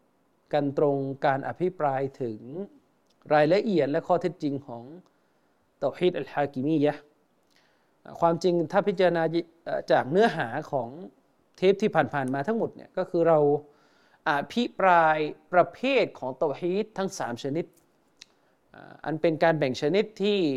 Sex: male